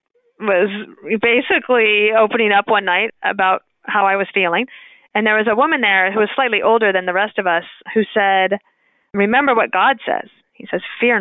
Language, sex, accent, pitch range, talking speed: English, female, American, 195-245 Hz, 185 wpm